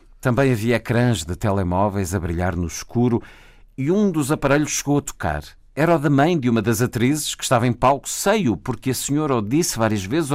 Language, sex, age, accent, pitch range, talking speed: Portuguese, male, 50-69, Portuguese, 95-130 Hz, 210 wpm